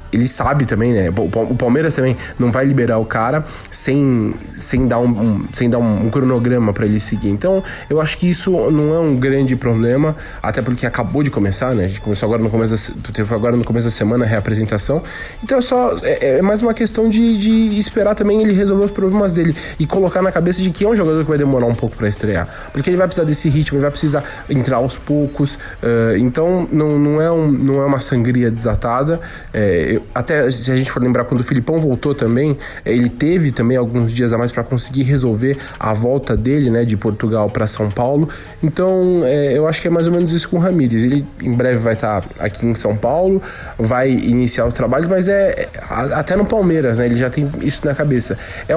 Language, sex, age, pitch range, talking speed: Portuguese, male, 20-39, 115-170 Hz, 225 wpm